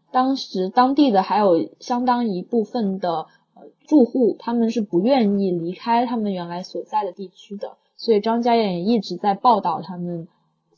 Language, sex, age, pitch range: Chinese, female, 20-39, 190-245 Hz